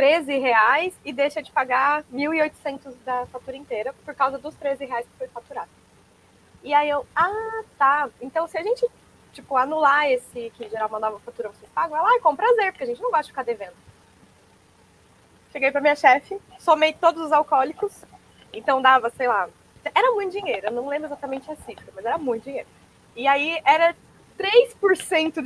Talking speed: 180 wpm